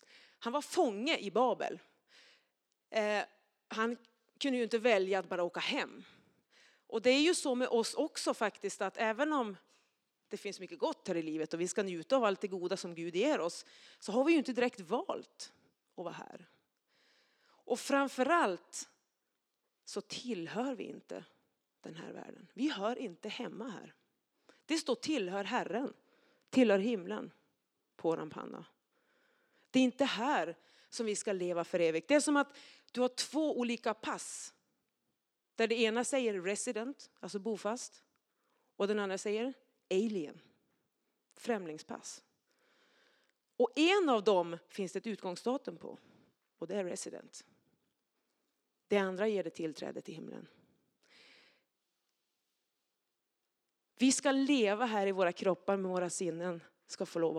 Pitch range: 190-260 Hz